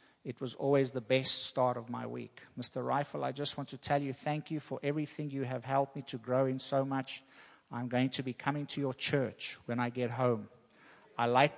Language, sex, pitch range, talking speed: English, male, 125-145 Hz, 230 wpm